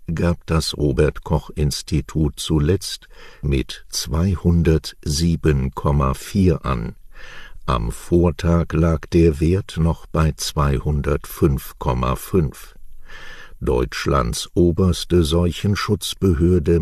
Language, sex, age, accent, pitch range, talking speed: English, male, 60-79, German, 70-90 Hz, 70 wpm